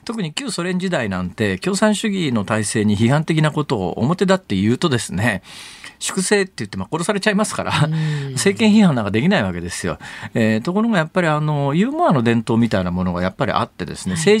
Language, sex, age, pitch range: Japanese, male, 40-59, 110-180 Hz